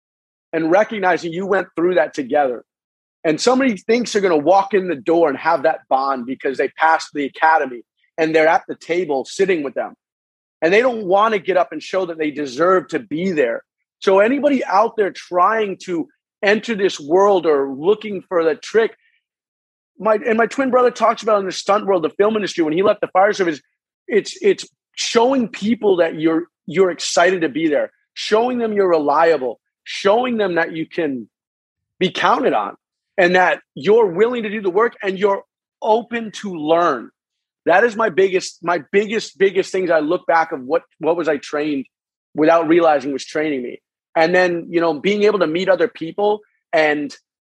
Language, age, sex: English, 30-49, male